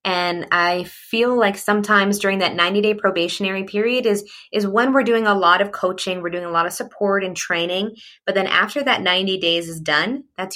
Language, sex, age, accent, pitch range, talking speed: English, female, 20-39, American, 170-205 Hz, 205 wpm